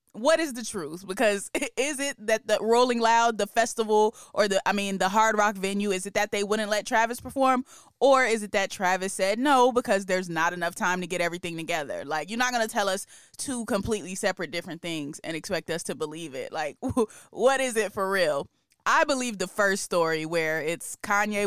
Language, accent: English, American